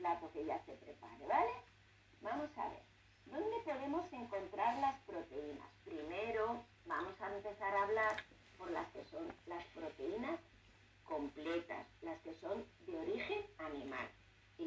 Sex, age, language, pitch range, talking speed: female, 50-69, Spanish, 150-255 Hz, 140 wpm